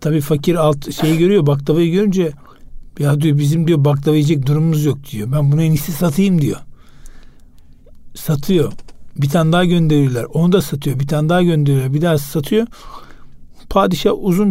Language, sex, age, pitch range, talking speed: Turkish, male, 60-79, 150-185 Hz, 155 wpm